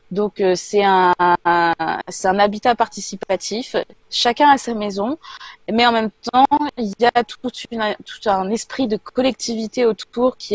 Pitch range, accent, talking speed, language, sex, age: 190-230 Hz, French, 170 wpm, French, female, 20-39